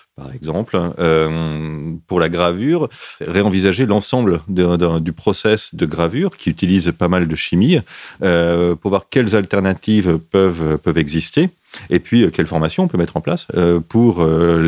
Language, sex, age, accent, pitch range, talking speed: French, male, 30-49, French, 80-100 Hz, 170 wpm